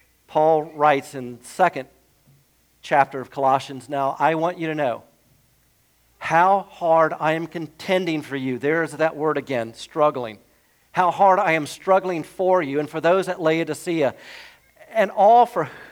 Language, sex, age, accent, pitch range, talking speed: English, male, 50-69, American, 125-165 Hz, 160 wpm